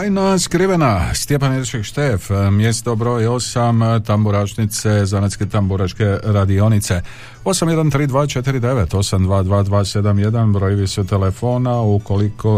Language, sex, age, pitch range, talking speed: Croatian, male, 50-69, 95-115 Hz, 80 wpm